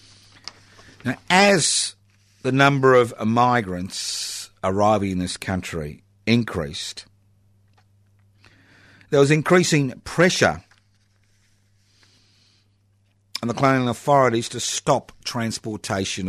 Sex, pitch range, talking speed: male, 100-120 Hz, 80 wpm